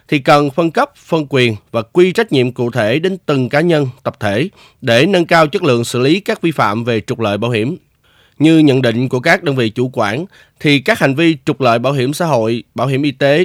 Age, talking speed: 20-39, 250 wpm